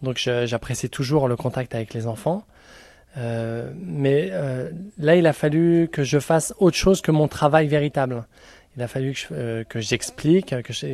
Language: French